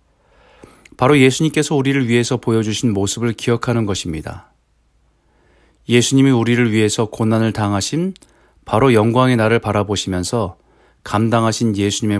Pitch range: 95-125 Hz